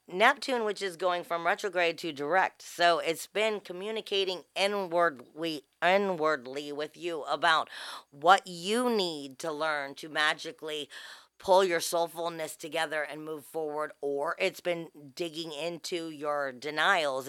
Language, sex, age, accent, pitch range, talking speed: English, female, 40-59, American, 150-185 Hz, 130 wpm